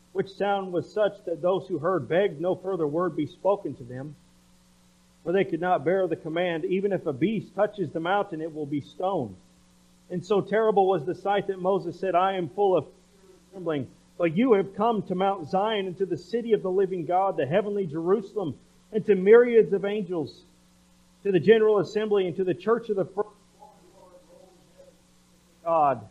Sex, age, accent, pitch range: male, 40-59, American, 160-195 Hz